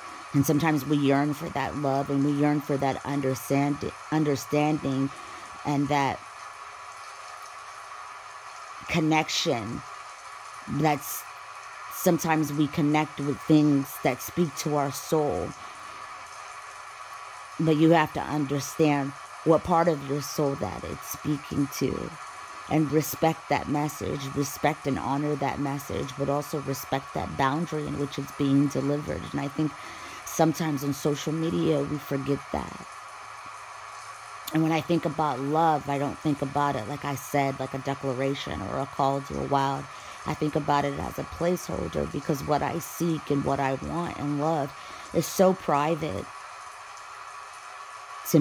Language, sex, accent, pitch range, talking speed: English, female, American, 140-155 Hz, 140 wpm